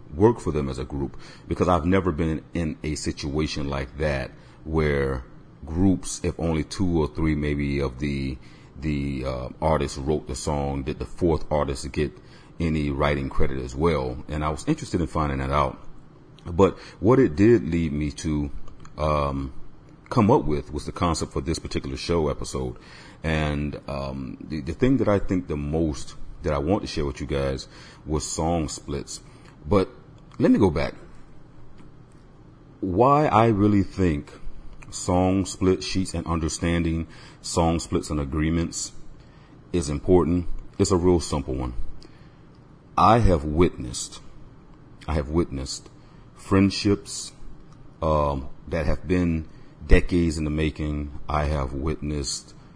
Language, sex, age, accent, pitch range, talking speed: English, male, 40-59, American, 70-85 Hz, 150 wpm